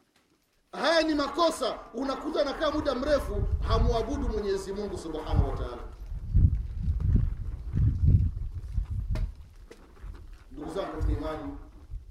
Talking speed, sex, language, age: 70 wpm, male, Swahili, 40-59